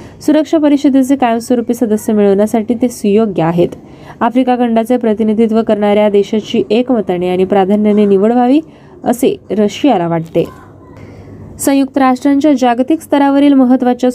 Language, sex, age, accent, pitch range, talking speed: Marathi, female, 20-39, native, 210-260 Hz, 100 wpm